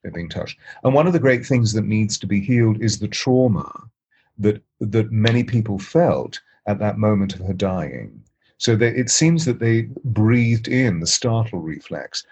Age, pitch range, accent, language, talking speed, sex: 40-59, 105-125 Hz, British, English, 190 wpm, male